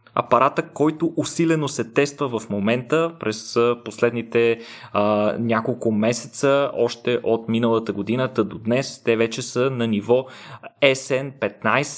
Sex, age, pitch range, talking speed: male, 20-39, 115-145 Hz, 120 wpm